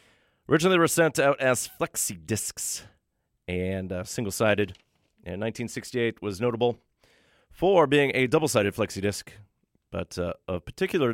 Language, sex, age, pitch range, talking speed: English, male, 30-49, 95-130 Hz, 125 wpm